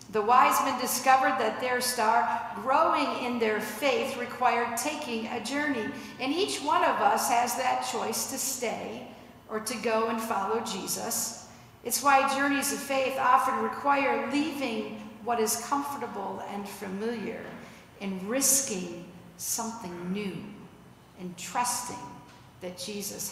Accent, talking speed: American, 135 wpm